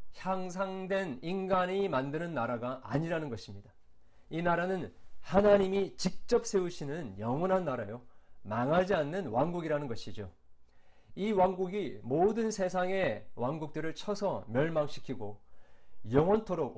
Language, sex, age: Korean, male, 40-59